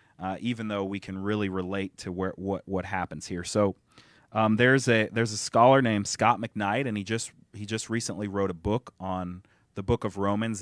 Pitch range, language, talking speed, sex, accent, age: 95-115 Hz, English, 210 wpm, male, American, 30-49